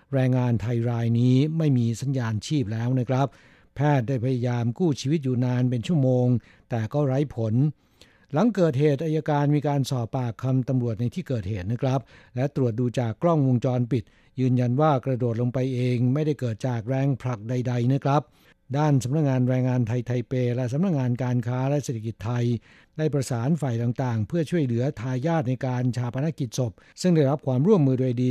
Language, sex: Thai, male